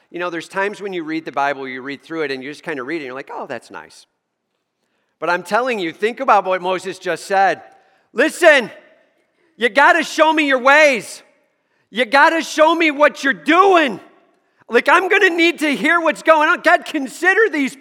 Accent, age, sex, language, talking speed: American, 40-59, male, English, 220 wpm